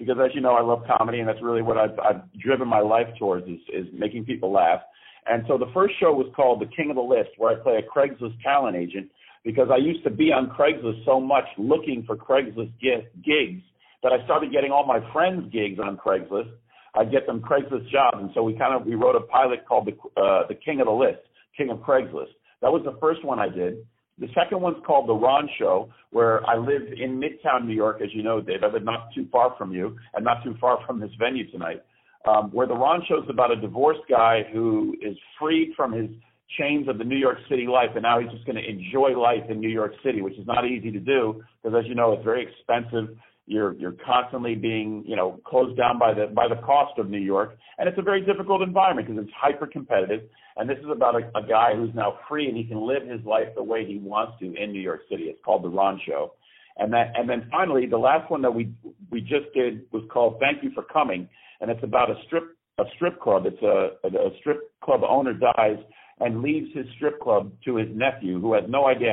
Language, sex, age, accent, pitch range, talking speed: English, male, 50-69, American, 110-140 Hz, 240 wpm